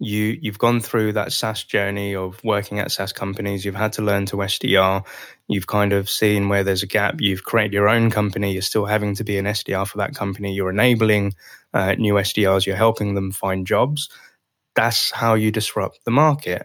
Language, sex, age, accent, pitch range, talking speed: English, male, 20-39, British, 100-115 Hz, 200 wpm